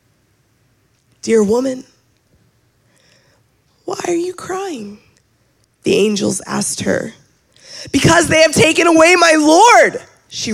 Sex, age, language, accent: female, 20-39, English, American